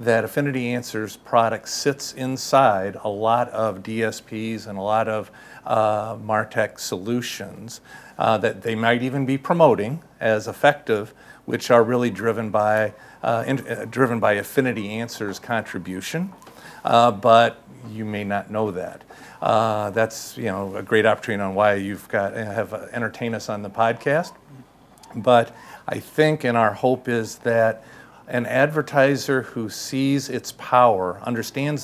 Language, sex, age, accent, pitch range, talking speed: English, male, 50-69, American, 110-125 Hz, 150 wpm